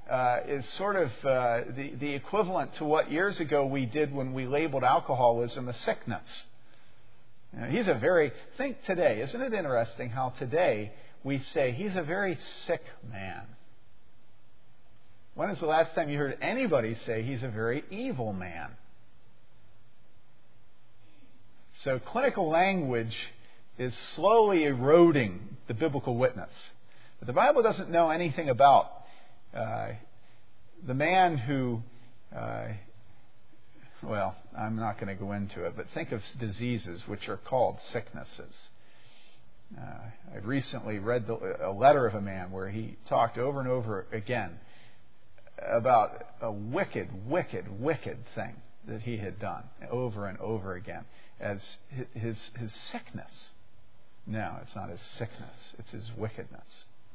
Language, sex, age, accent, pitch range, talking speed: English, male, 50-69, American, 110-140 Hz, 135 wpm